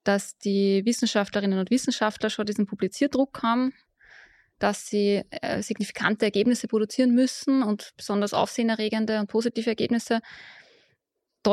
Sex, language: female, German